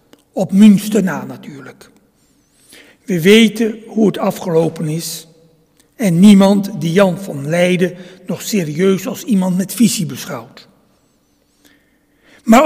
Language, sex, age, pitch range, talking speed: Dutch, male, 60-79, 185-245 Hz, 115 wpm